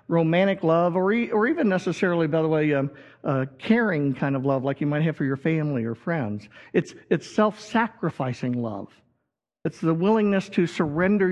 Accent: American